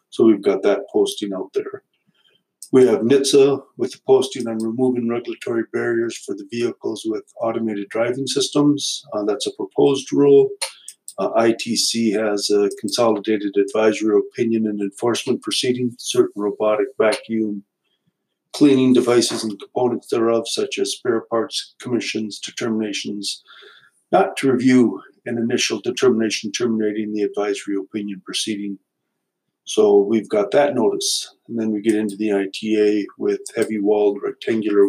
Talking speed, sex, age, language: 140 wpm, male, 50-69, English